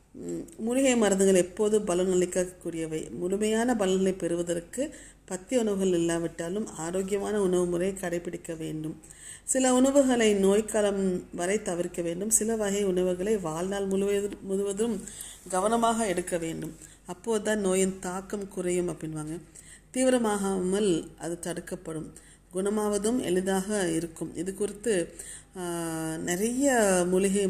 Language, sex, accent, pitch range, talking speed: Tamil, female, native, 170-205 Hz, 100 wpm